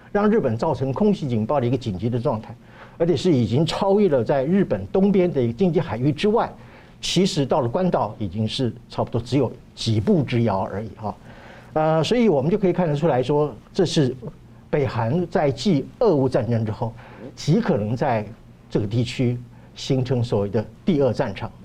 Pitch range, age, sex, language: 115-180 Hz, 50-69, male, Chinese